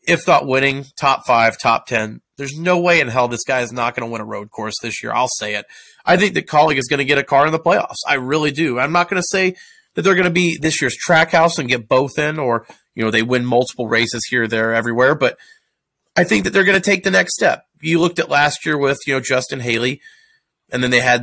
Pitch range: 125-185 Hz